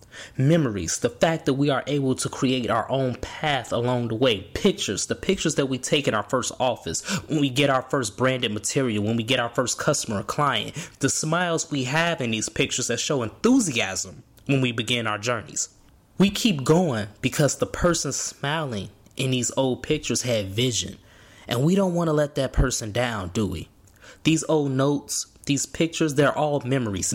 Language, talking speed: English, 190 wpm